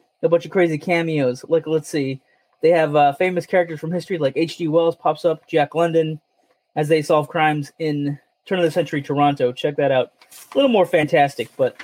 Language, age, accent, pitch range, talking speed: English, 20-39, American, 150-215 Hz, 205 wpm